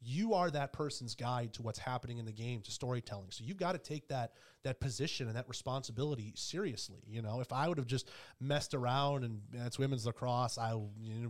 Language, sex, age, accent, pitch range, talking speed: English, male, 30-49, American, 115-140 Hz, 225 wpm